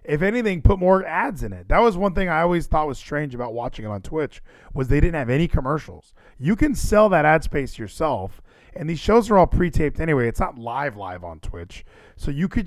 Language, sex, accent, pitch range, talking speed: English, male, American, 125-170 Hz, 235 wpm